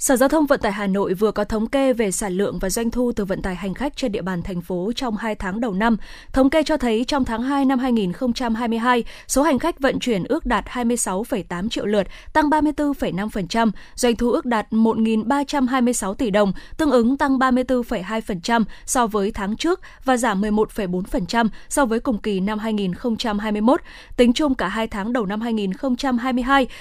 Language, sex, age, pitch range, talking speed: Vietnamese, female, 20-39, 210-265 Hz, 190 wpm